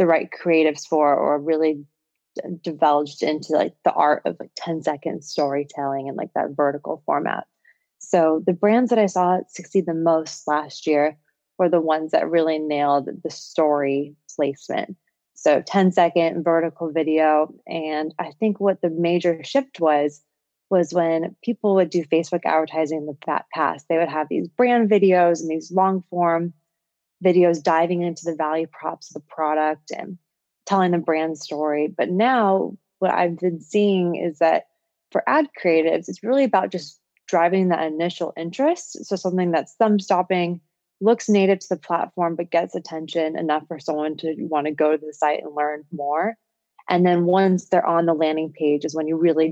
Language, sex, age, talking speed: English, female, 20-39, 175 wpm